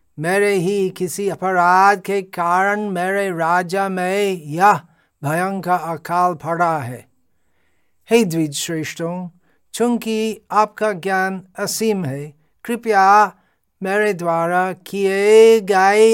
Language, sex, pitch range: Hindi, male, 140-200 Hz